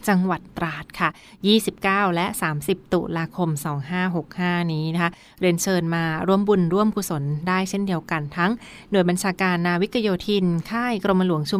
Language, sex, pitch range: Thai, female, 170-200 Hz